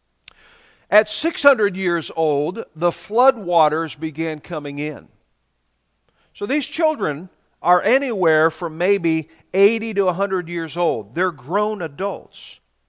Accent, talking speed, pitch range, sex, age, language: American, 110 wpm, 150-210 Hz, male, 50-69, English